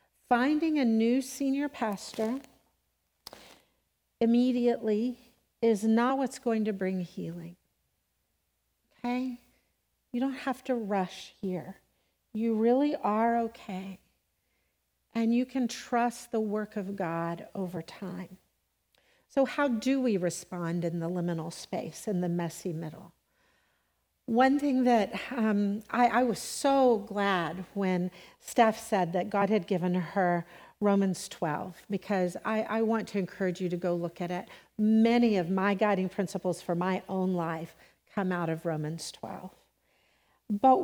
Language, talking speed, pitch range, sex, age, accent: English, 135 wpm, 180-235 Hz, female, 60-79, American